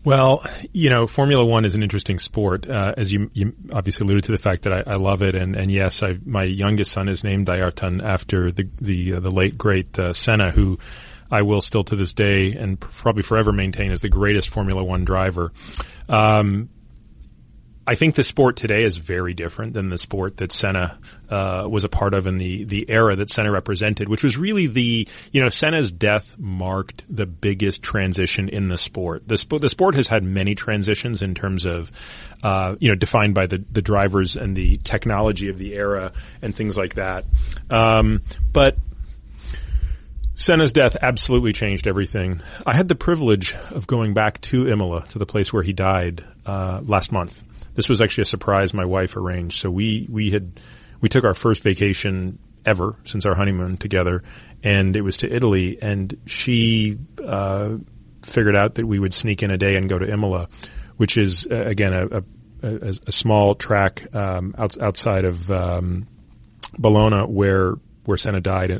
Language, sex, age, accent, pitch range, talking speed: English, male, 30-49, American, 95-110 Hz, 190 wpm